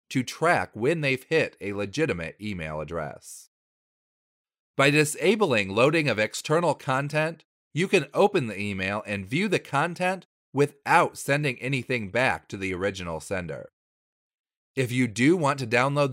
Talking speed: 140 wpm